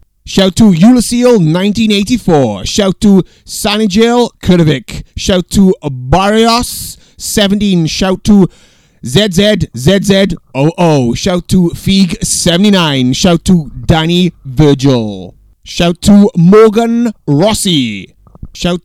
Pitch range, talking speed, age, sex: 150-200 Hz, 90 wpm, 30-49, male